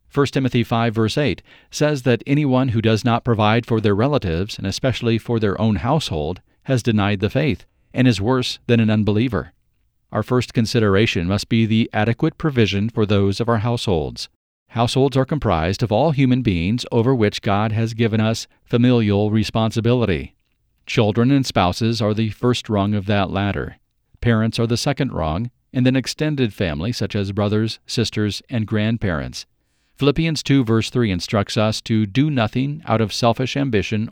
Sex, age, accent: male, 40-59, American